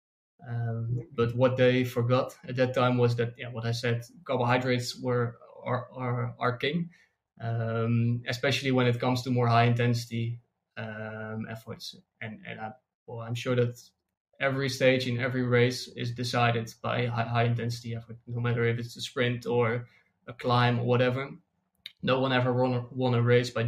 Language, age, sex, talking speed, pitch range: English, 20-39, male, 175 wpm, 115-125 Hz